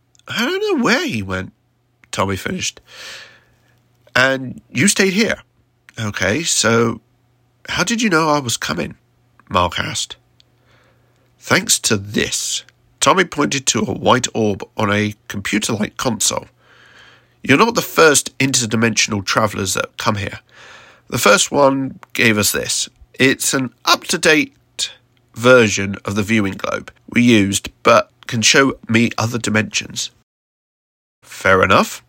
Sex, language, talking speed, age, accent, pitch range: male, English, 130 wpm, 50-69, British, 110-125 Hz